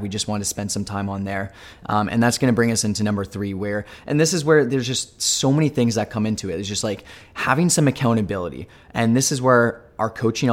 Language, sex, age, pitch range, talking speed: English, male, 20-39, 105-120 Hz, 255 wpm